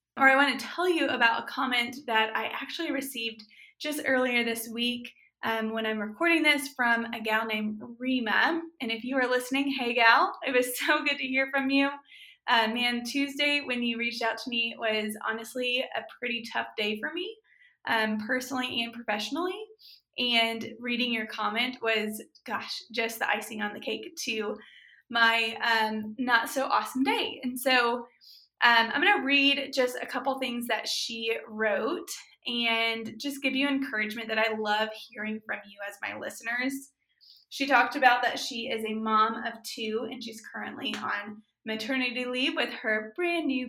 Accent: American